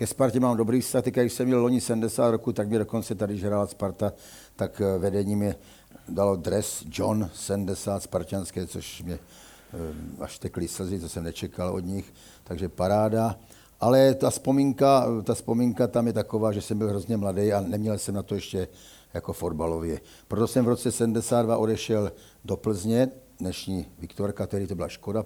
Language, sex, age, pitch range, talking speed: Czech, male, 60-79, 95-110 Hz, 175 wpm